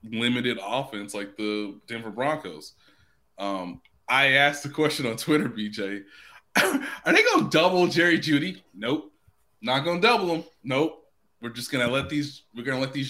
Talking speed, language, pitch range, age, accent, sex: 160 wpm, English, 110-150 Hz, 20-39, American, male